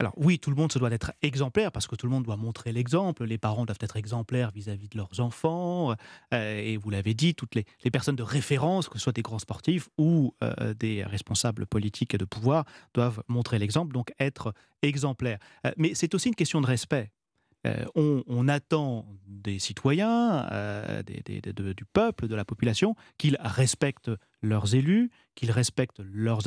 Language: French